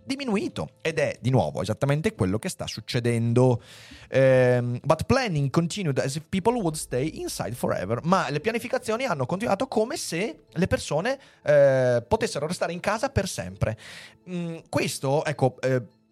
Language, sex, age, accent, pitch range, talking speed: Italian, male, 30-49, native, 115-185 Hz, 140 wpm